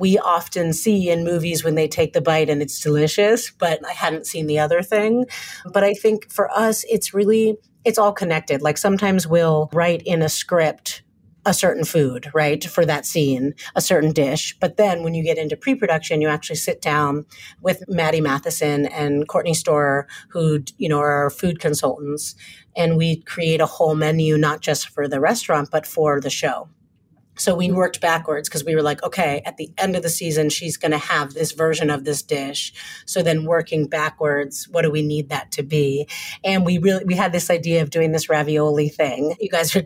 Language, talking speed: English, 205 wpm